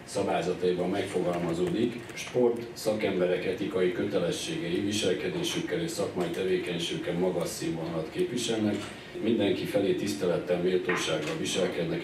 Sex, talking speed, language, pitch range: male, 90 wpm, Hungarian, 90-110 Hz